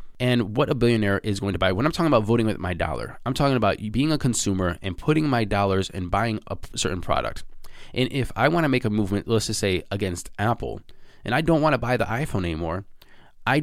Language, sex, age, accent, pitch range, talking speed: English, male, 20-39, American, 95-130 Hz, 240 wpm